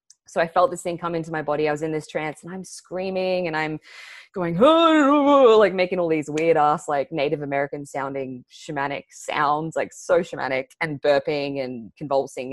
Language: English